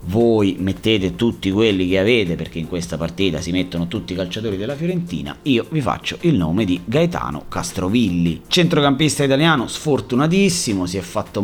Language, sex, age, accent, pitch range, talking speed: Italian, male, 30-49, native, 90-125 Hz, 165 wpm